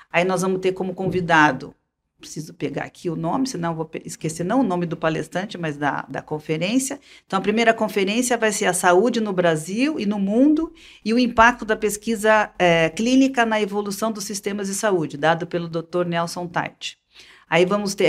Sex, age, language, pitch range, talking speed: female, 40-59, Portuguese, 175-225 Hz, 190 wpm